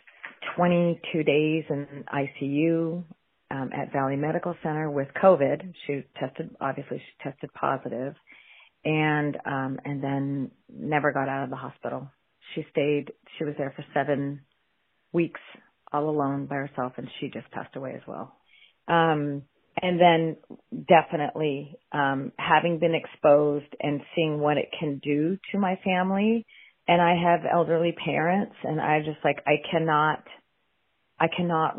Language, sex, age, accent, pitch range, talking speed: English, female, 40-59, American, 140-175 Hz, 145 wpm